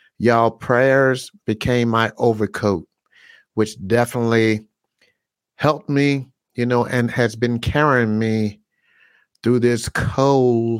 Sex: male